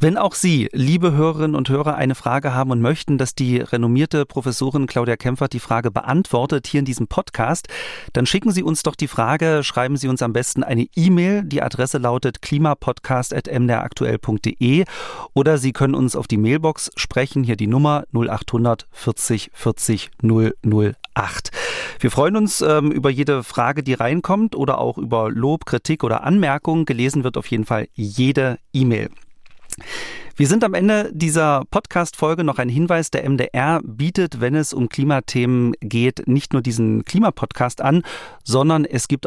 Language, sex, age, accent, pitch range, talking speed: German, male, 40-59, German, 120-155 Hz, 160 wpm